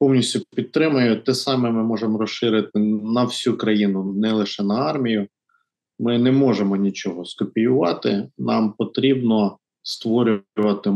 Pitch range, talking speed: 105-135 Hz, 120 wpm